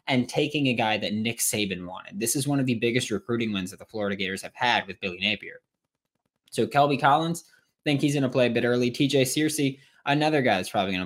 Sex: male